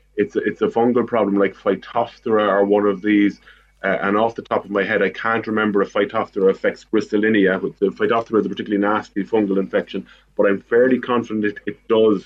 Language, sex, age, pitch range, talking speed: English, male, 30-49, 100-115 Hz, 200 wpm